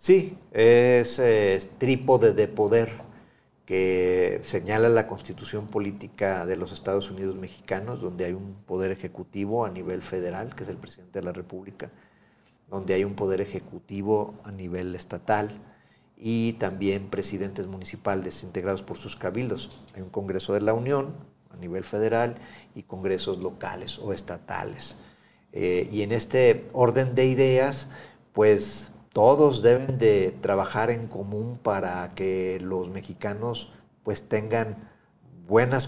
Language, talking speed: Spanish, 140 wpm